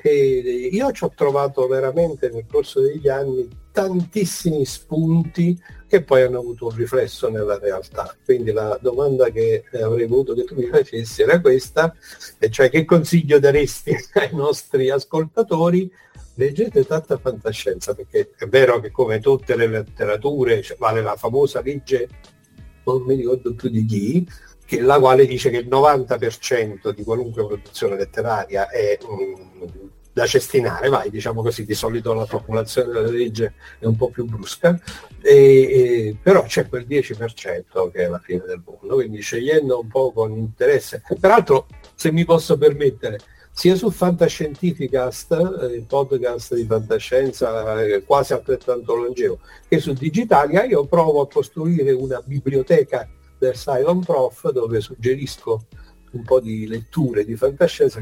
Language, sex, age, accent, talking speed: Italian, male, 50-69, native, 145 wpm